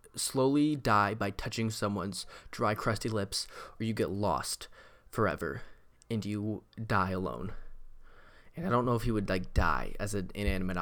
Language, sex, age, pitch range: English, male, 20-39, 100-130 Hz